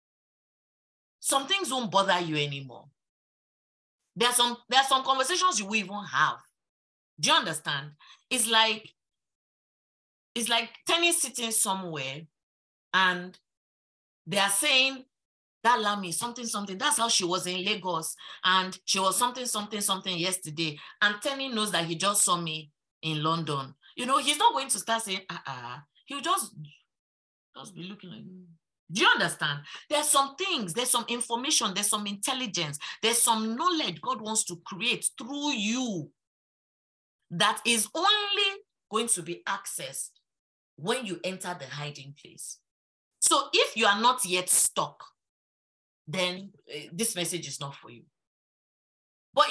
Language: English